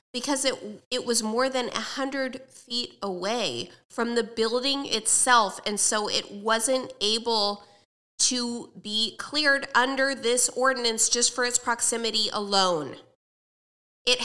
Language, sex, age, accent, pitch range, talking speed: English, female, 20-39, American, 200-260 Hz, 125 wpm